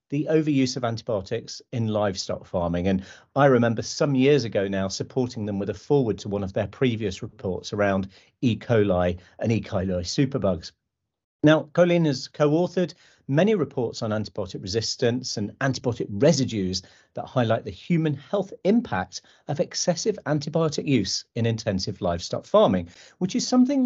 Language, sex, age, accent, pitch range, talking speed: English, male, 40-59, British, 105-150 Hz, 155 wpm